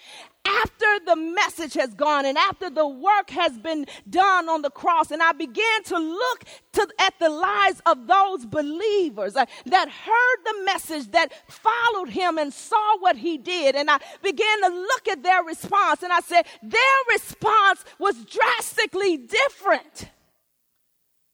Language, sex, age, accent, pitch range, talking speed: English, female, 40-59, American, 305-400 Hz, 150 wpm